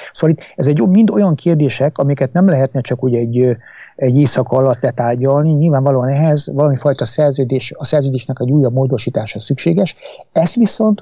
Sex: male